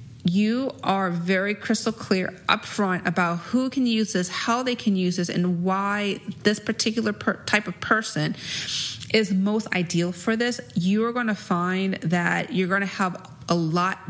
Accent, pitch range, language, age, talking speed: American, 170-210 Hz, English, 30-49, 170 wpm